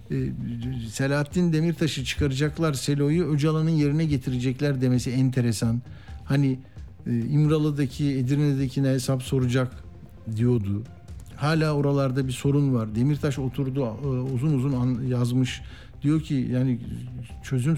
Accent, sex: native, male